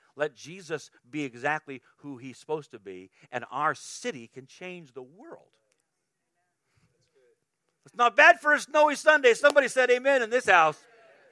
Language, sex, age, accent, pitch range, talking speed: English, male, 40-59, American, 130-180 Hz, 155 wpm